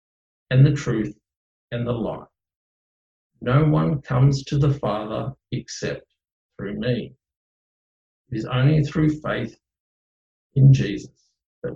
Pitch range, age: 110-140 Hz, 50-69